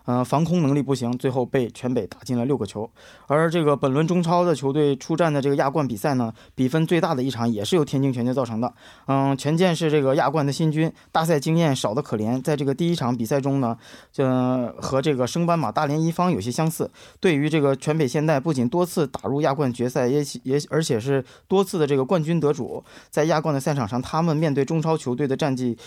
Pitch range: 125-160 Hz